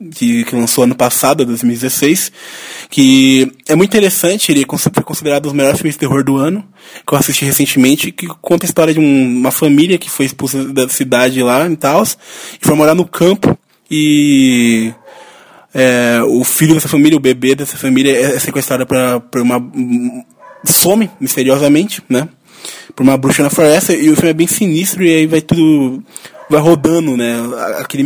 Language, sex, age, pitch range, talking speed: Portuguese, male, 20-39, 130-160 Hz, 170 wpm